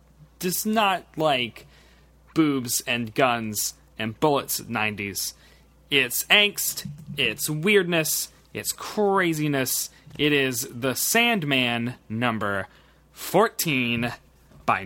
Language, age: English, 20-39